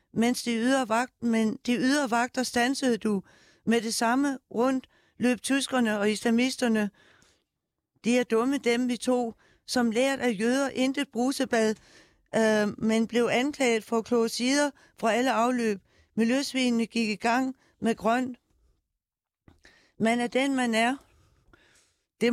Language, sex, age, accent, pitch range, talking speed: Danish, female, 60-79, native, 225-255 Hz, 135 wpm